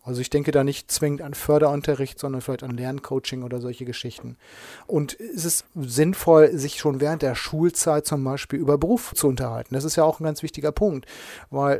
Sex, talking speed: male, 200 wpm